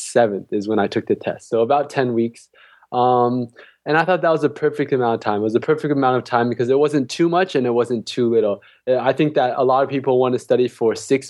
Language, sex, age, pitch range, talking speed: English, male, 20-39, 115-140 Hz, 270 wpm